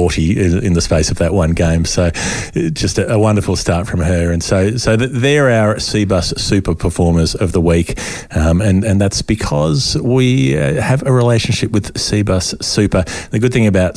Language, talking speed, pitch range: English, 185 wpm, 85-105 Hz